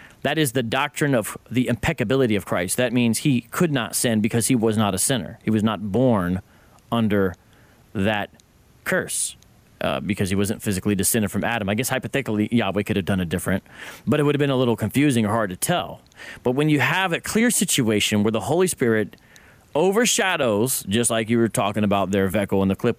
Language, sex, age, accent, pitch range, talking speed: English, male, 30-49, American, 105-150 Hz, 210 wpm